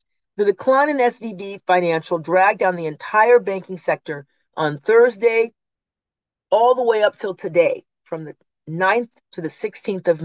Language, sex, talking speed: English, female, 150 wpm